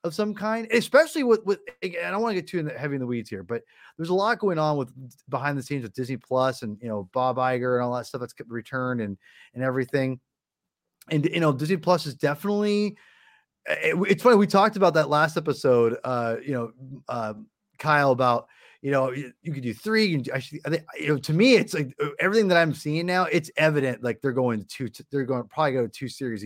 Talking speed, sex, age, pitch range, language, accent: 230 wpm, male, 30-49, 125-175 Hz, English, American